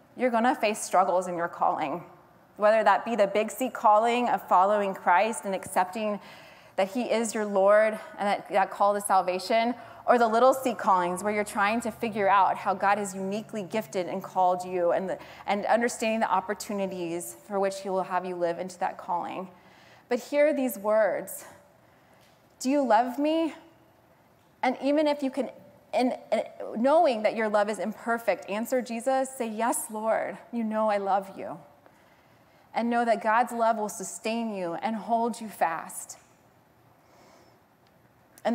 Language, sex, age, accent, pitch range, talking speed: English, female, 20-39, American, 190-235 Hz, 170 wpm